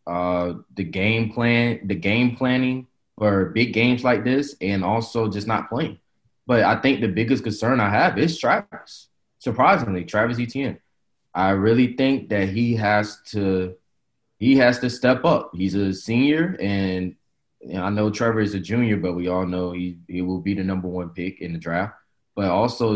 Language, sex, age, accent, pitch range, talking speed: English, male, 20-39, American, 90-110 Hz, 185 wpm